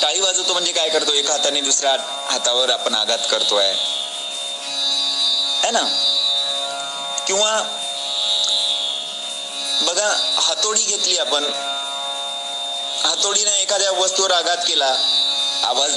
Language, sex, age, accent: Marathi, male, 30-49, native